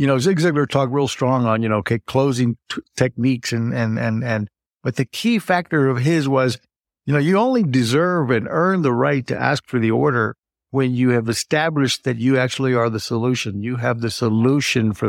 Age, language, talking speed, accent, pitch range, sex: 60-79, English, 215 wpm, American, 115-150 Hz, male